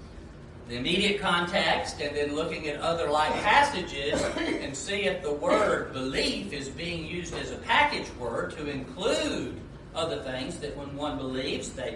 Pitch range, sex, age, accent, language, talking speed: 120-185 Hz, male, 40-59, American, English, 160 wpm